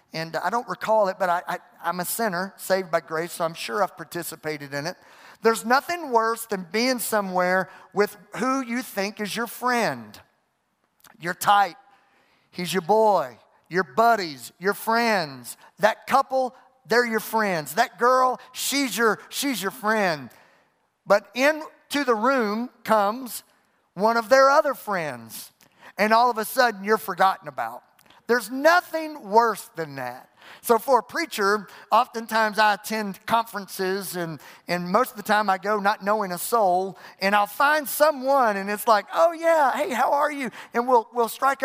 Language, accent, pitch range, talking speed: English, American, 185-230 Hz, 160 wpm